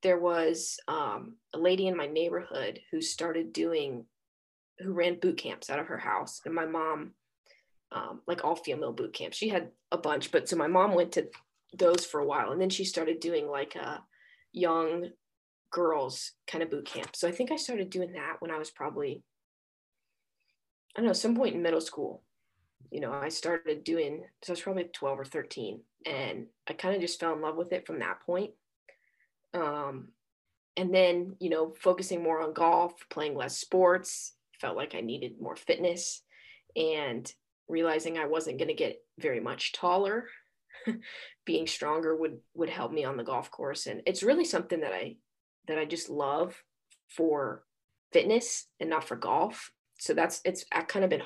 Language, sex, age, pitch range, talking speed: English, female, 20-39, 160-230 Hz, 185 wpm